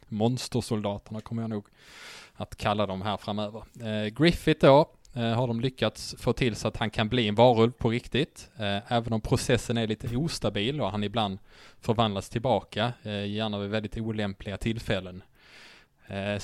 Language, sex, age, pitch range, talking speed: English, male, 20-39, 105-125 Hz, 170 wpm